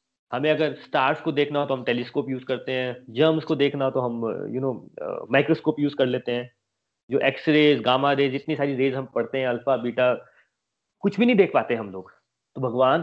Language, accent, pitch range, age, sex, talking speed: Hindi, native, 125-170 Hz, 30-49, male, 220 wpm